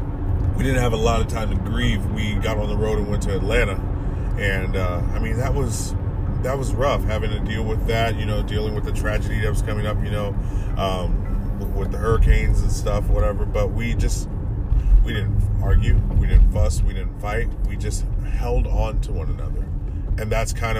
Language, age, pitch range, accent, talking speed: English, 30-49, 95-110 Hz, American, 210 wpm